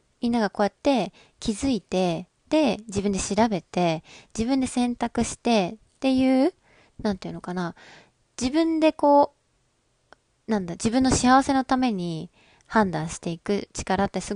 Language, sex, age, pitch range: Japanese, female, 20-39, 185-255 Hz